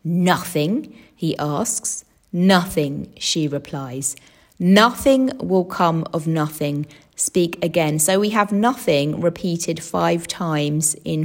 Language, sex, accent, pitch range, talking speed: English, female, British, 150-185 Hz, 110 wpm